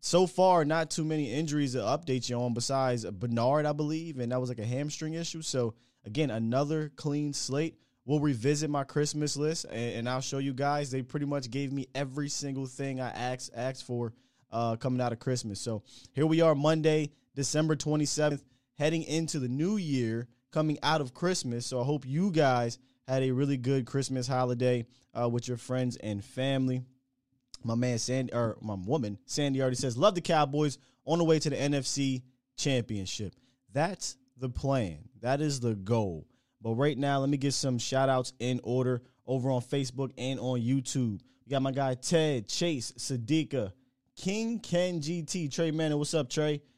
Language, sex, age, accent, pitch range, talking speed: English, male, 20-39, American, 125-150 Hz, 185 wpm